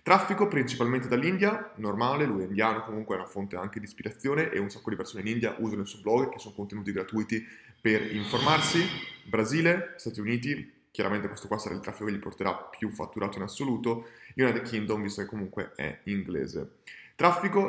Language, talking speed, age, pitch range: Italian, 185 wpm, 20-39, 105-125 Hz